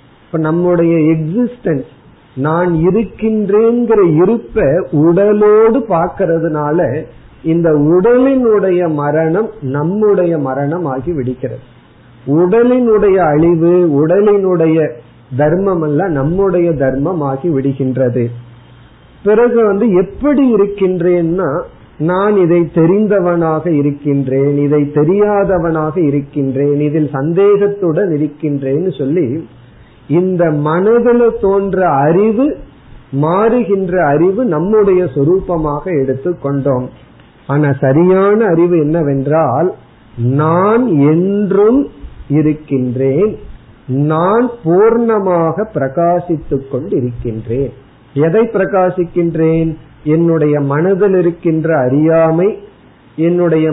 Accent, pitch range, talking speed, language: native, 140-190 Hz, 70 wpm, Tamil